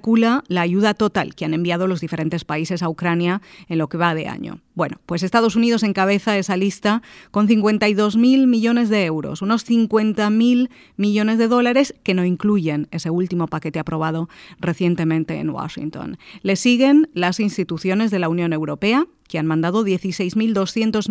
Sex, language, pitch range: female, Spanish, 175-235 Hz